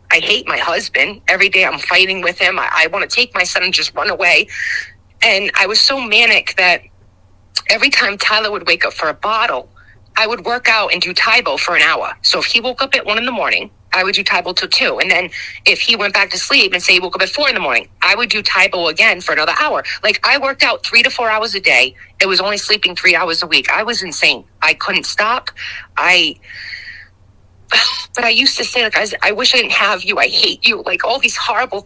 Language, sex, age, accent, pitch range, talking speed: English, female, 30-49, American, 180-235 Hz, 245 wpm